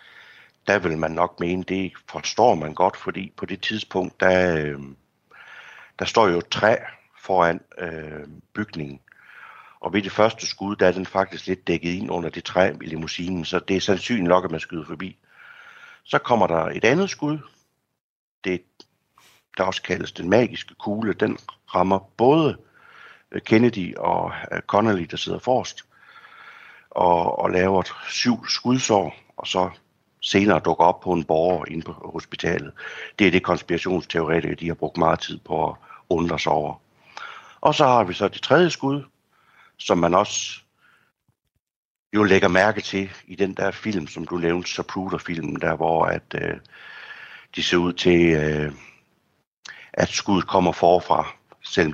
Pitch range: 85-105 Hz